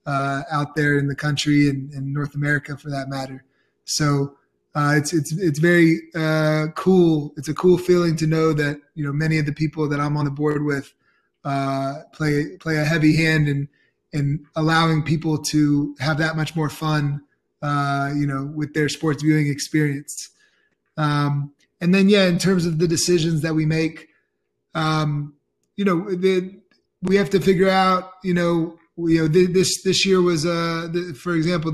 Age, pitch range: 20-39, 145-165 Hz